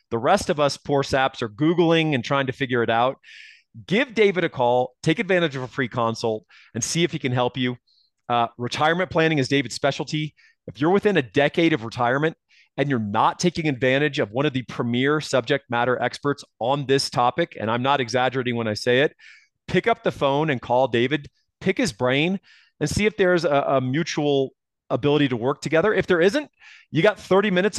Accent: American